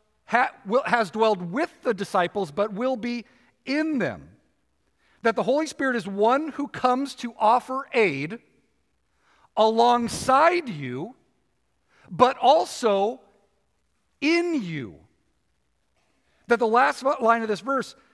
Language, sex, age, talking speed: English, male, 50-69, 115 wpm